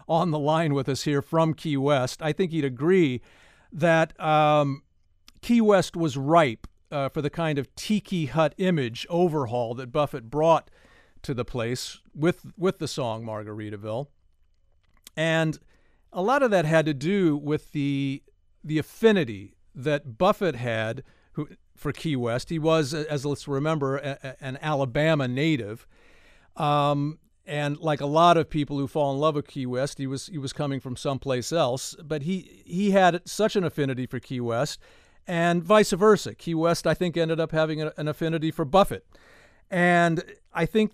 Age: 50-69